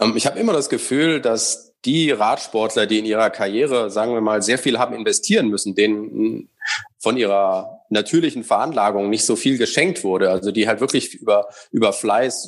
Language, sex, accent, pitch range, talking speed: German, male, German, 105-125 Hz, 180 wpm